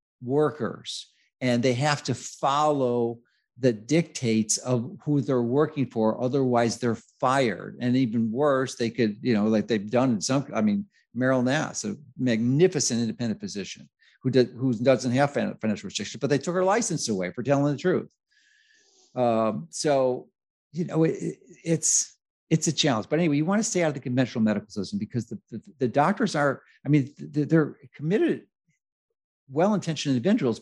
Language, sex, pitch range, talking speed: English, male, 115-155 Hz, 165 wpm